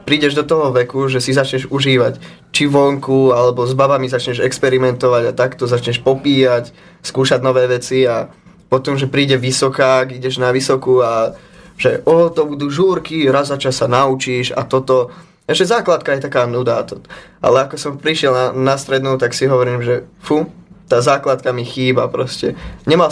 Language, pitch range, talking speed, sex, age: Slovak, 125-155 Hz, 170 wpm, male, 20-39